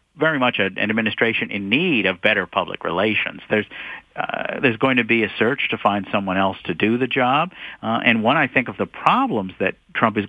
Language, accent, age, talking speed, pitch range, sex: English, American, 50-69, 215 wpm, 110-135 Hz, male